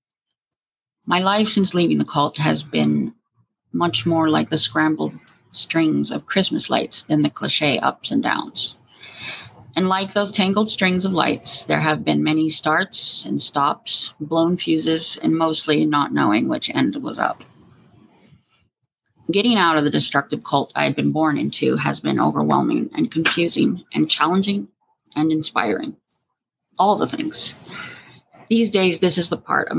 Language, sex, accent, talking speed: English, female, American, 155 wpm